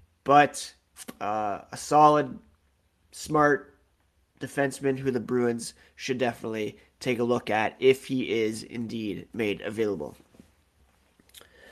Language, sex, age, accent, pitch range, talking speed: English, male, 20-39, American, 125-150 Hz, 110 wpm